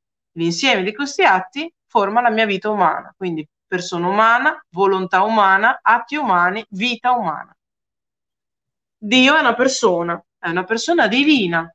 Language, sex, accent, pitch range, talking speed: Italian, female, native, 195-290 Hz, 135 wpm